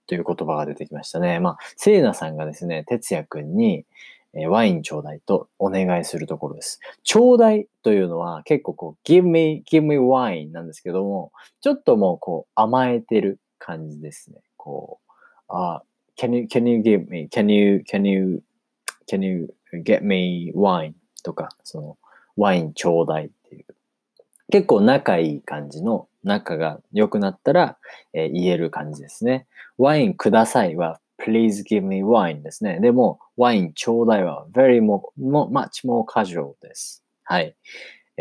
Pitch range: 85-130 Hz